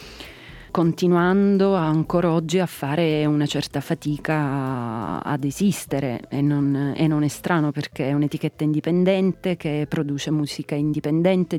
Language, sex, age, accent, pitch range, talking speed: Italian, female, 30-49, native, 140-165 Hz, 125 wpm